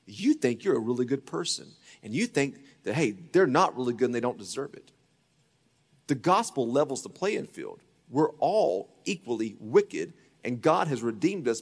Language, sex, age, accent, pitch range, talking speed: English, male, 30-49, American, 145-235 Hz, 185 wpm